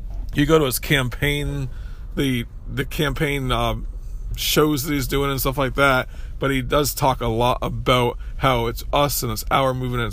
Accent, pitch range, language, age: American, 110-140 Hz, English, 40-59